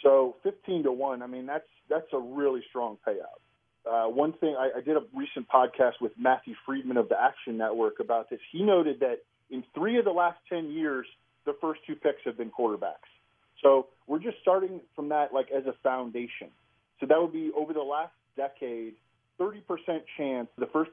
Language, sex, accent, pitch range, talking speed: English, male, American, 125-165 Hz, 200 wpm